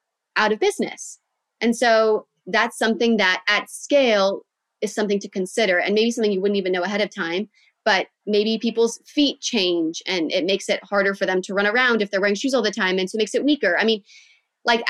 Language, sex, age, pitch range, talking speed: English, female, 20-39, 190-240 Hz, 220 wpm